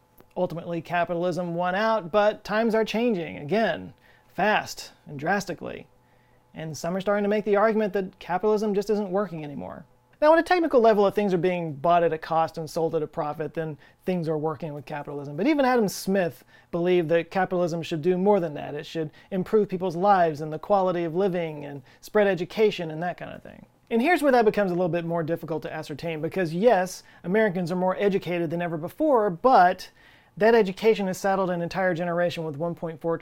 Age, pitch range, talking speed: 30-49, 160-200 Hz, 200 wpm